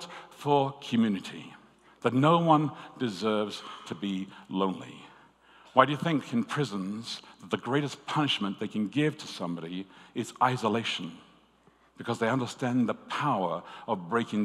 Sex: male